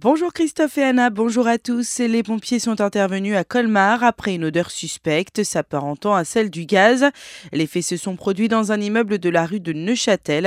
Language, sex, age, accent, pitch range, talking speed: French, female, 30-49, French, 165-230 Hz, 200 wpm